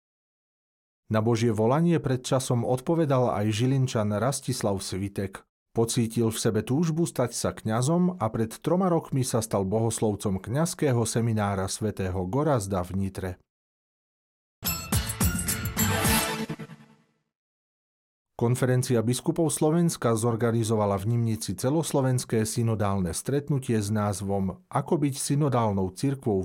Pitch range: 100-130 Hz